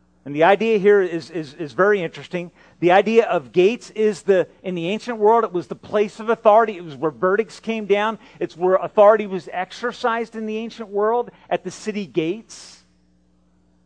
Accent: American